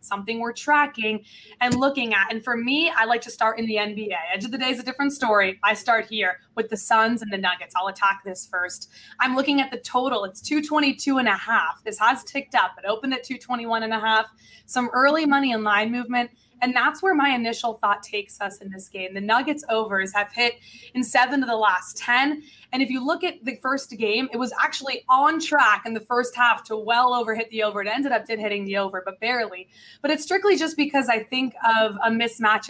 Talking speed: 235 wpm